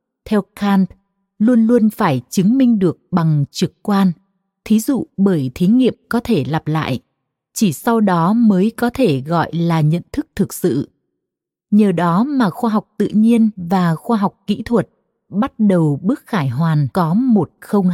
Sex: female